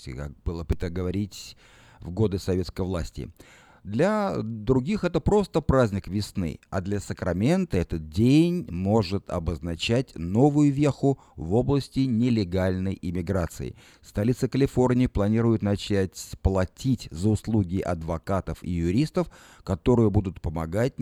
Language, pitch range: Russian, 90-130 Hz